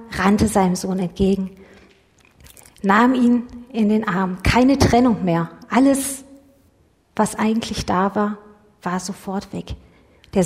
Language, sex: German, female